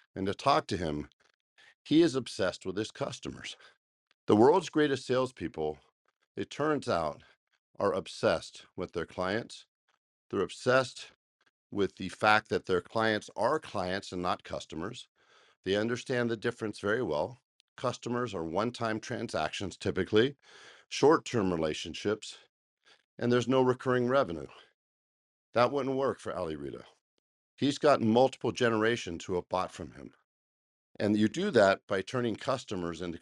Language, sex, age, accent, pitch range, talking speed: English, male, 50-69, American, 95-125 Hz, 140 wpm